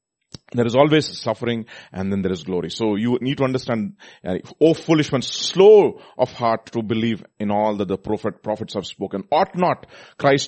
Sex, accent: male, Indian